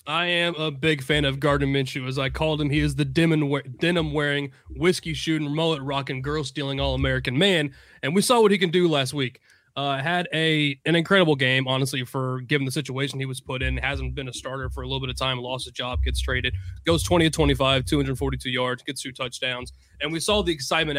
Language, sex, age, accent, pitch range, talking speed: English, male, 20-39, American, 130-160 Hz, 230 wpm